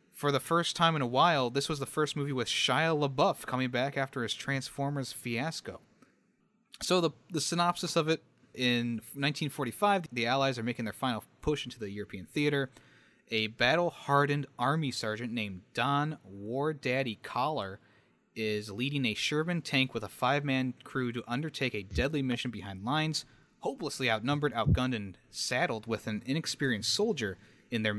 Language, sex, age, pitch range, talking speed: English, male, 30-49, 110-145 Hz, 165 wpm